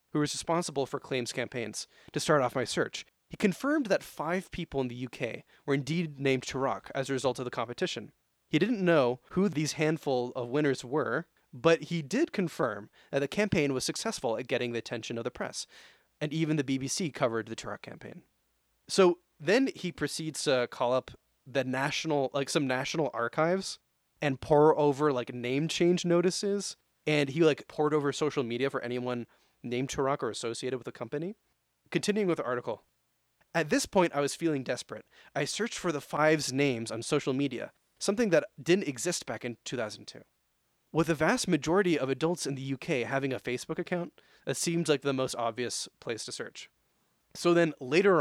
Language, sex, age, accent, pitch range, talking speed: English, male, 20-39, American, 130-170 Hz, 185 wpm